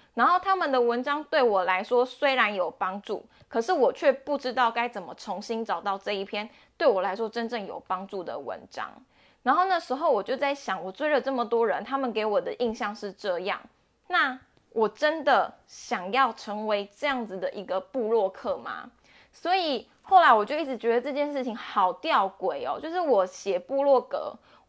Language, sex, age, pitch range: Chinese, female, 20-39, 205-280 Hz